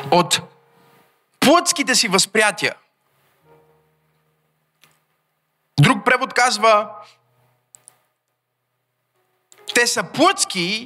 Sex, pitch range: male, 110-180 Hz